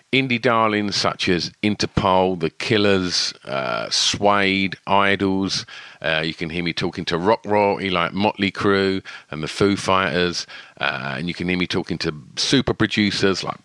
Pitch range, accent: 90-110 Hz, British